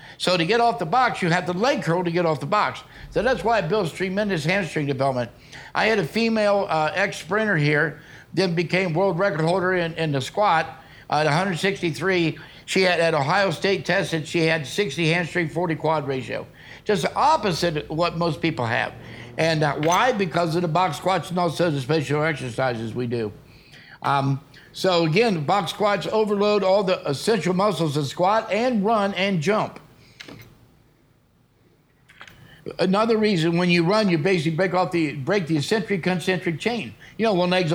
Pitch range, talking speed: 155-200 Hz, 180 wpm